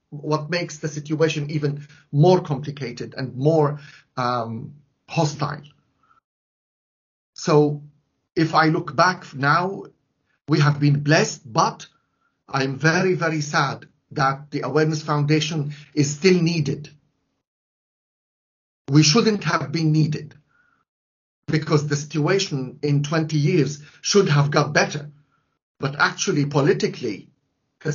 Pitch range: 140-160 Hz